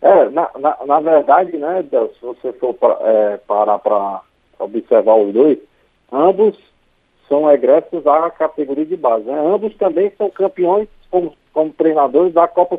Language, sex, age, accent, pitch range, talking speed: Portuguese, male, 40-59, Brazilian, 130-190 Hz, 145 wpm